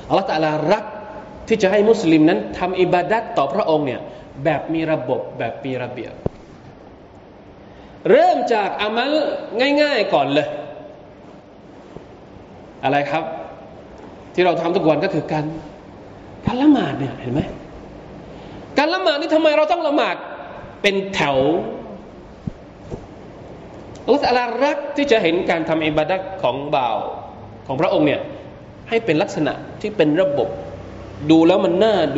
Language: Thai